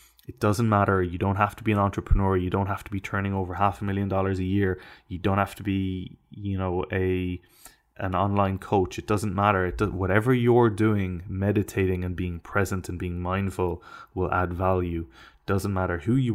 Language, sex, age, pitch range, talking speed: English, male, 20-39, 90-100 Hz, 200 wpm